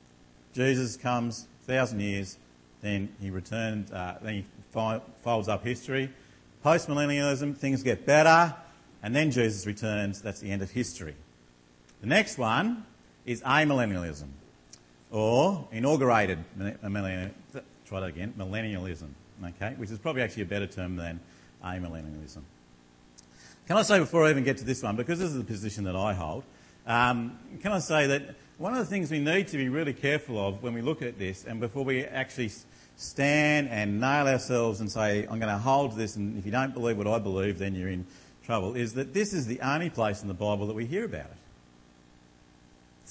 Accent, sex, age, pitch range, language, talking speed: Australian, male, 50-69, 95-135 Hz, English, 180 wpm